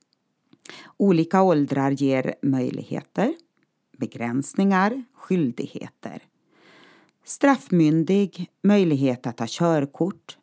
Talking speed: 65 wpm